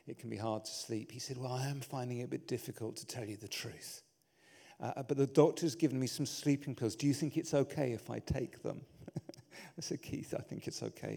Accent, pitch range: British, 120-160 Hz